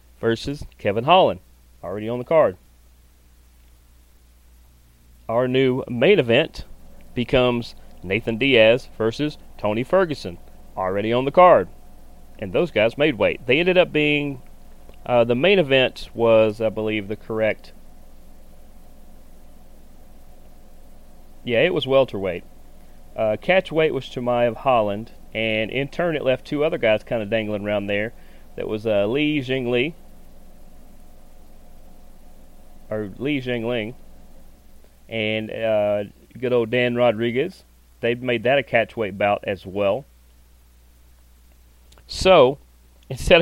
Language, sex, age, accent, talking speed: English, male, 30-49, American, 115 wpm